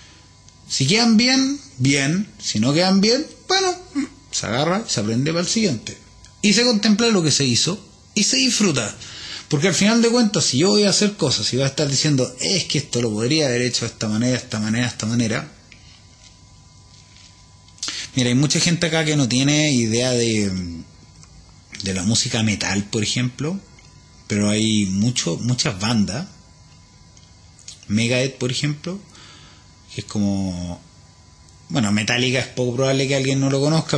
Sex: male